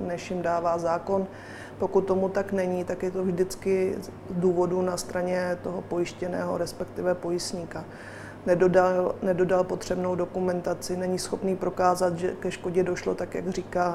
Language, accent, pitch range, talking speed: Czech, native, 180-190 Hz, 145 wpm